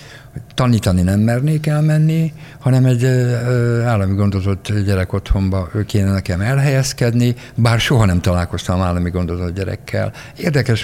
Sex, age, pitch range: male, 60-79, 95-120 Hz